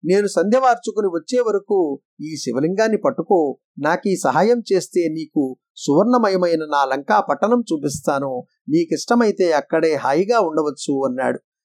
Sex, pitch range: male, 155-225 Hz